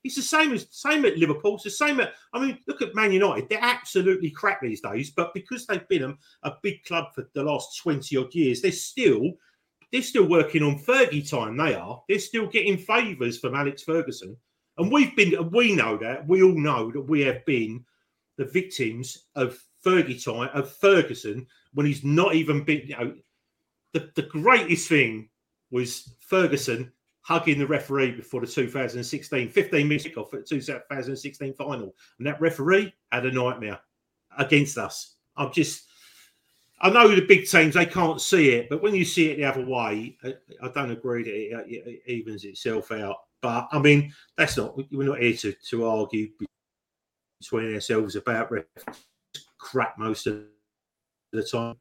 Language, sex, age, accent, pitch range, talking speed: English, male, 40-59, British, 125-175 Hz, 175 wpm